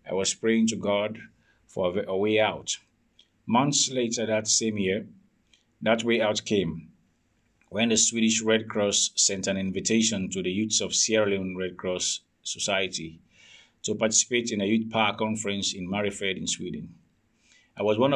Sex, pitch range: male, 100-115 Hz